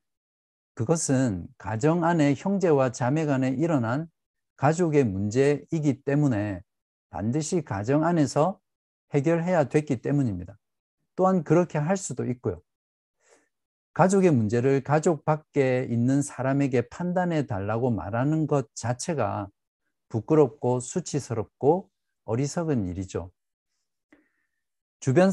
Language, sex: Korean, male